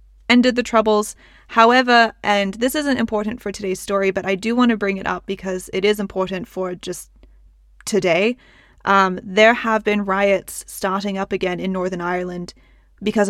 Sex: female